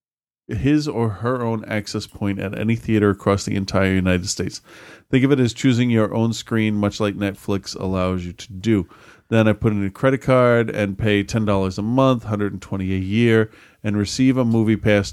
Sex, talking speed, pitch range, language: male, 195 wpm, 100-115 Hz, English